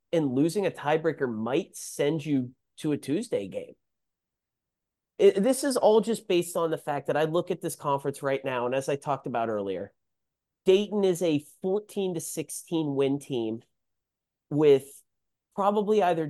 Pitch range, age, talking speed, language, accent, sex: 130-170 Hz, 30-49, 165 wpm, English, American, male